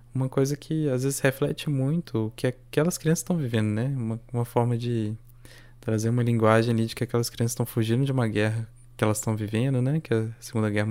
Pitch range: 115-130 Hz